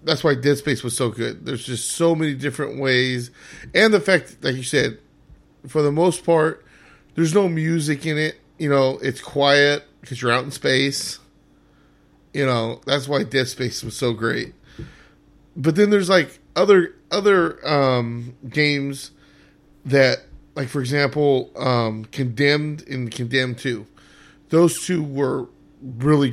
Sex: male